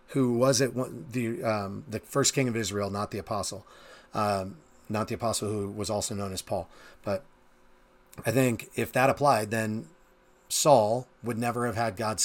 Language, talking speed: English, 175 wpm